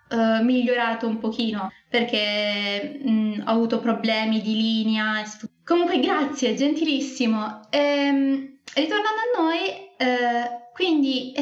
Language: Italian